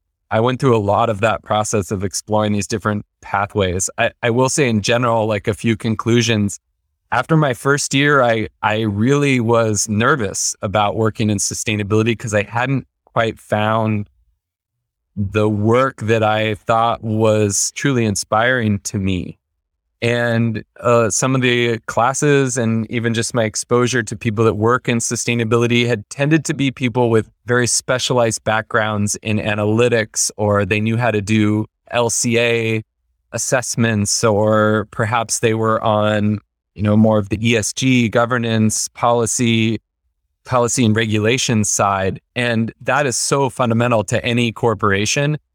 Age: 20-39